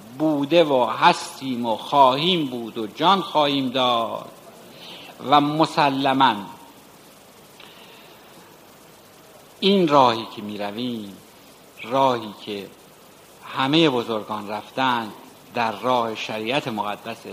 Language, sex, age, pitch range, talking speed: Persian, male, 60-79, 125-170 Hz, 85 wpm